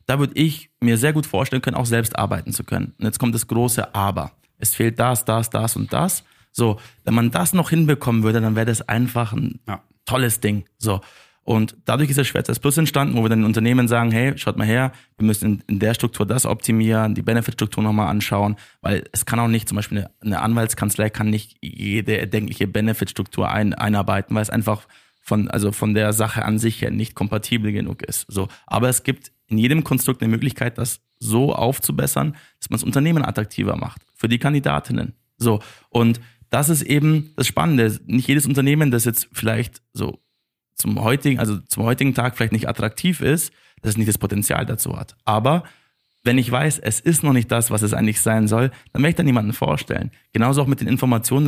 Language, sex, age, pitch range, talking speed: German, male, 20-39, 110-130 Hz, 205 wpm